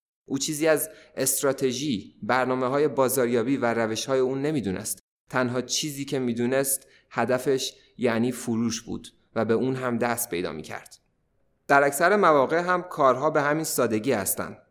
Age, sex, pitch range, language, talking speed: 30-49, male, 115-135 Hz, Persian, 140 wpm